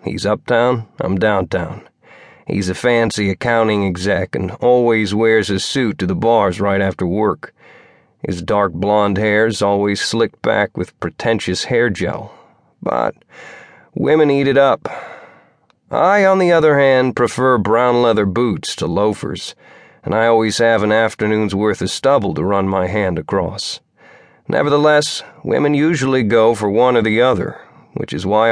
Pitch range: 105-130 Hz